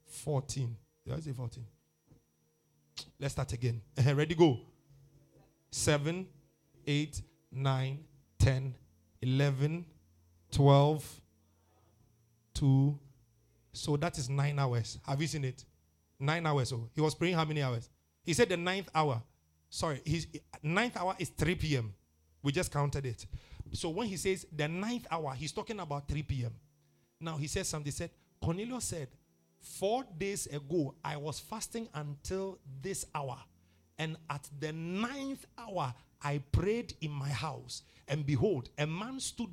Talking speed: 145 wpm